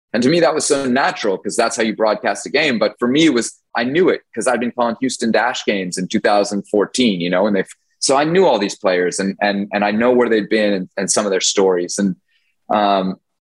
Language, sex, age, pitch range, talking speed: English, male, 20-39, 100-115 Hz, 250 wpm